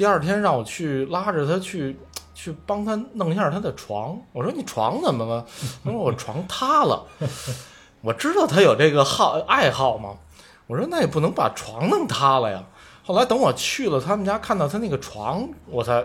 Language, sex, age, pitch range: Chinese, male, 20-39, 110-155 Hz